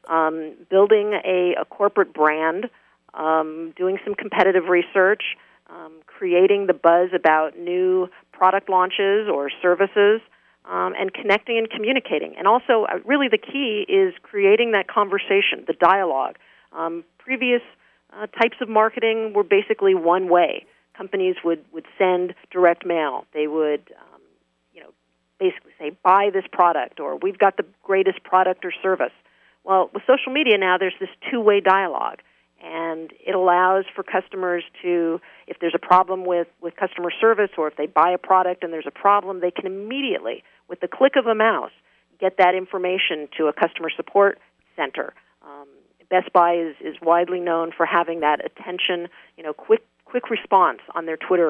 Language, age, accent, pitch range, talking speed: English, 50-69, American, 170-205 Hz, 165 wpm